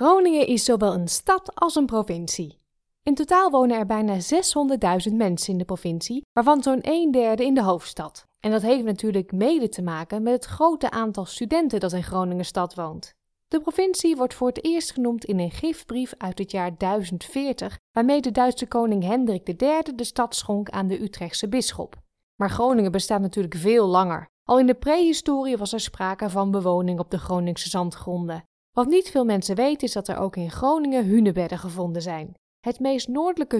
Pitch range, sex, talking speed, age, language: 185-270 Hz, female, 190 wpm, 20-39, Dutch